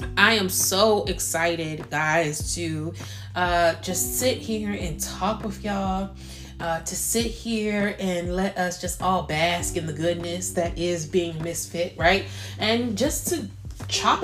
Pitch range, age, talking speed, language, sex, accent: 155-200 Hz, 20-39, 150 wpm, English, female, American